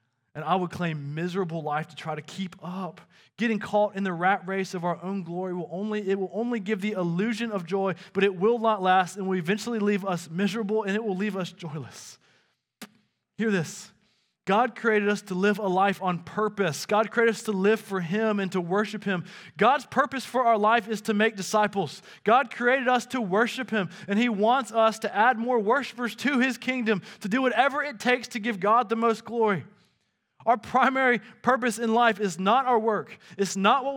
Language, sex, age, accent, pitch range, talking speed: English, male, 20-39, American, 190-240 Hz, 210 wpm